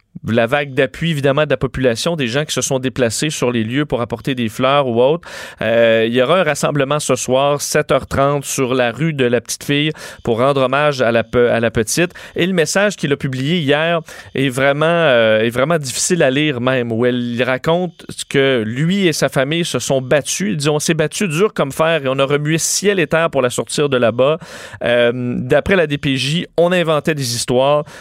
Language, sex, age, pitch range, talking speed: French, male, 30-49, 130-160 Hz, 220 wpm